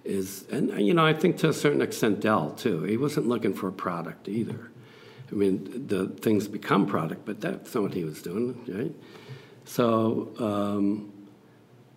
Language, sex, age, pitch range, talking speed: English, male, 60-79, 105-130 Hz, 175 wpm